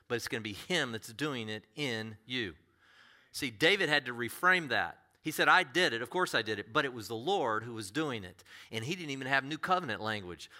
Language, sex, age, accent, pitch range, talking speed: English, male, 40-59, American, 110-170 Hz, 250 wpm